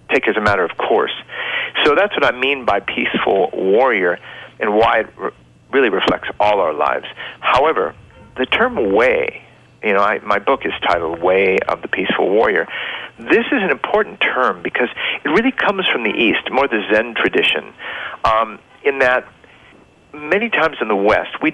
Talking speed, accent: 175 wpm, American